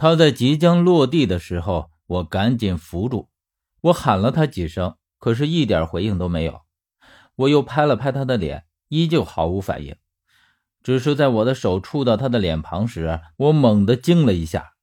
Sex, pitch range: male, 85-130 Hz